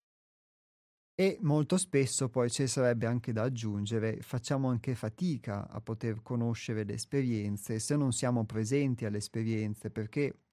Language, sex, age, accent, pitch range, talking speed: Italian, male, 30-49, native, 110-135 Hz, 135 wpm